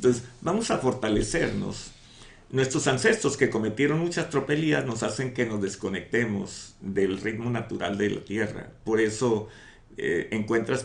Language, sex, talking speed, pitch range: Spanish, male, 140 wpm, 105-140 Hz